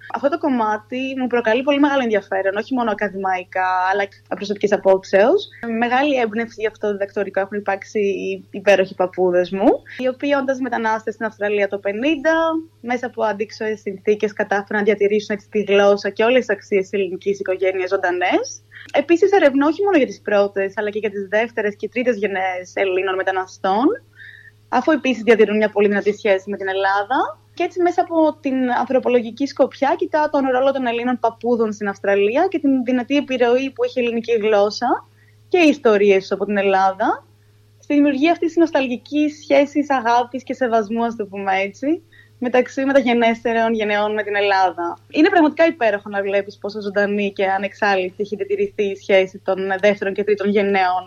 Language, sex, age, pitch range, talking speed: Greek, female, 20-39, 195-255 Hz, 170 wpm